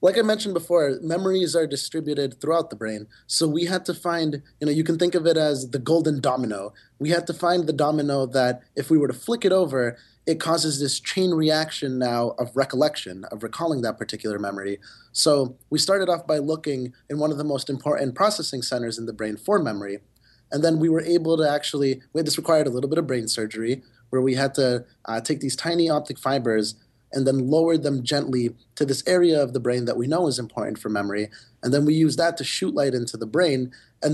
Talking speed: 220 wpm